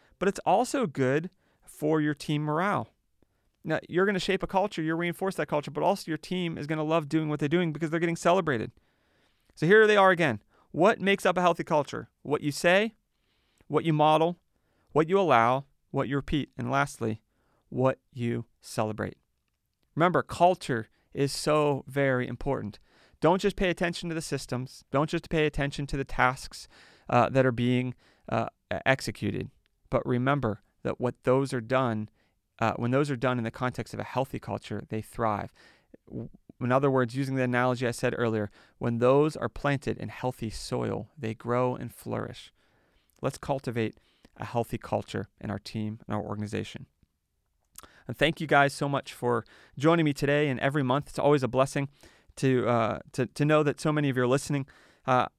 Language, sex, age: English, male, 40-59